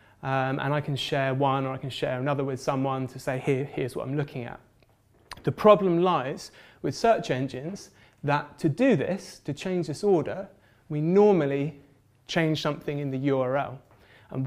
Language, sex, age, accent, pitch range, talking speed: English, male, 30-49, British, 135-170 Hz, 180 wpm